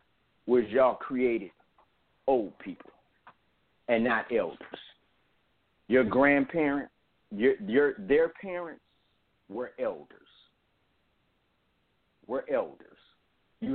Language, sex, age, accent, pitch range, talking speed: English, male, 50-69, American, 100-130 Hz, 85 wpm